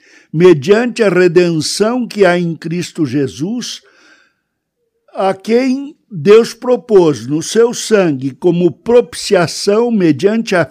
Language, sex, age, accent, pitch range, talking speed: Portuguese, male, 60-79, Brazilian, 150-200 Hz, 105 wpm